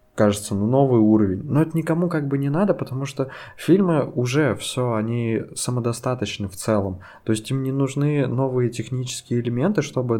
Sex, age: male, 20-39